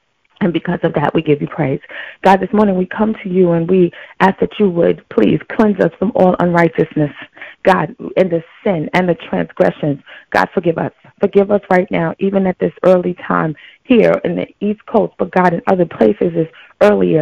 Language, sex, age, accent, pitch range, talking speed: English, female, 30-49, American, 170-205 Hz, 200 wpm